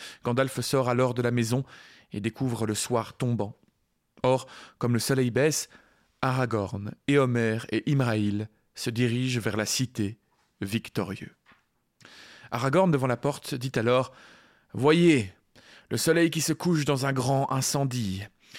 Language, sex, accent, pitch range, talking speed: French, male, French, 120-145 Hz, 135 wpm